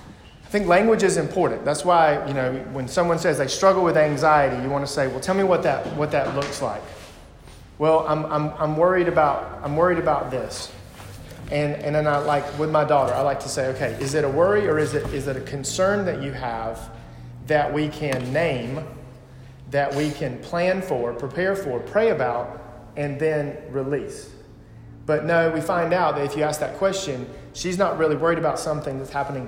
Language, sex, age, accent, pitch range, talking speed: English, male, 40-59, American, 130-160 Hz, 205 wpm